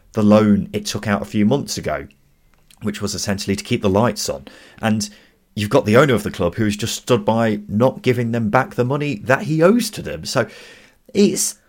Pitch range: 100-120 Hz